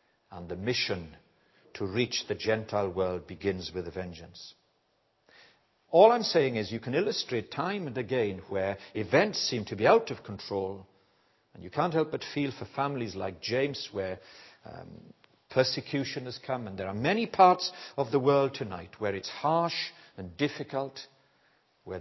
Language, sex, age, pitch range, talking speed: English, male, 60-79, 95-135 Hz, 165 wpm